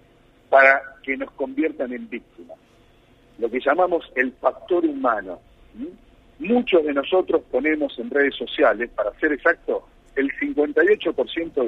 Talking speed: 125 wpm